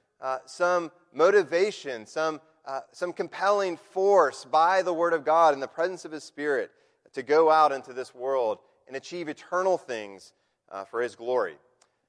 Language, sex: English, male